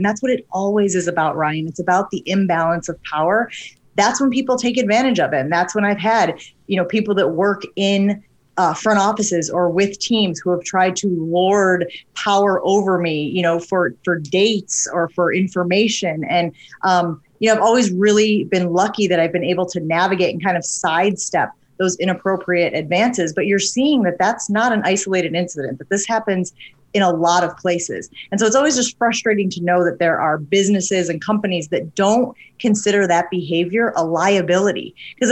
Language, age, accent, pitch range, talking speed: English, 30-49, American, 175-210 Hz, 195 wpm